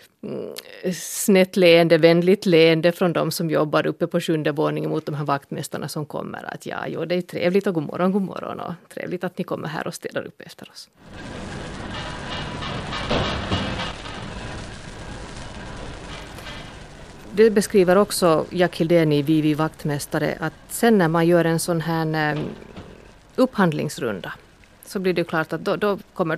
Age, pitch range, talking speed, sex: 30-49, 155-195 Hz, 145 wpm, female